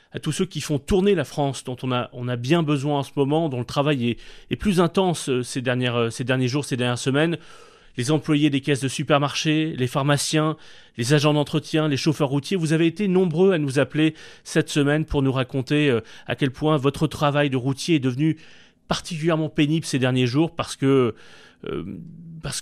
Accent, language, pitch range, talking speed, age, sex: French, French, 125-155 Hz, 200 wpm, 30-49, male